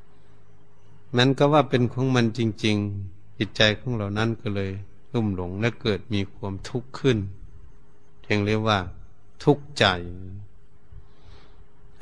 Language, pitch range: Thai, 100-120 Hz